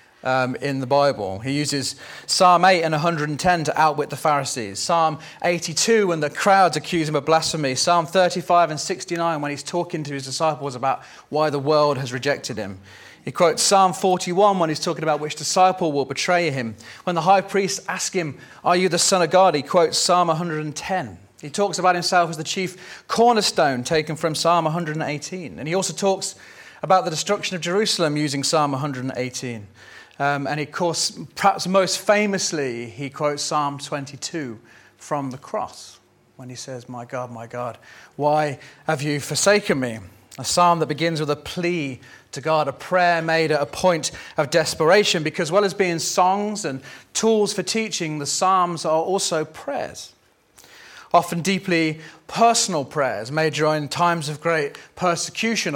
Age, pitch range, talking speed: 30-49, 140-180 Hz, 175 wpm